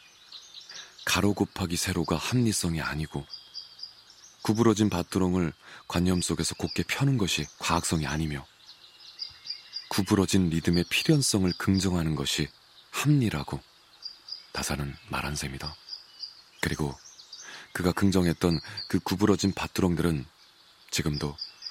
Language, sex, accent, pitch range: Korean, male, native, 80-95 Hz